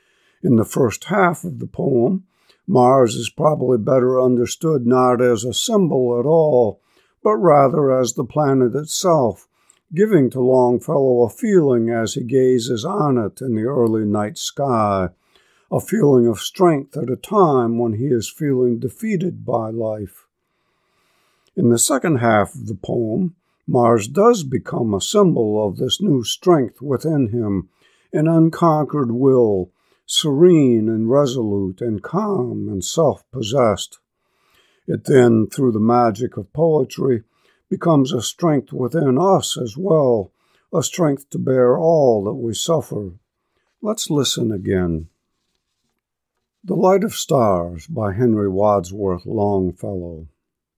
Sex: male